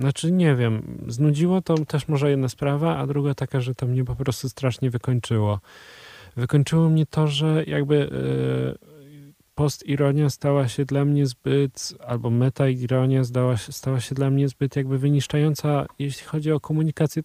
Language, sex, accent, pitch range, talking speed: Polish, male, native, 115-140 Hz, 150 wpm